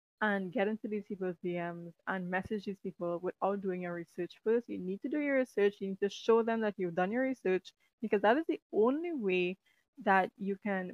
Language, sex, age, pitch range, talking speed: English, female, 20-39, 185-230 Hz, 220 wpm